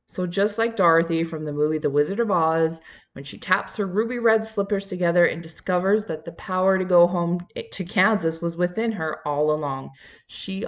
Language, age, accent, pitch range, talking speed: English, 20-39, American, 150-200 Hz, 195 wpm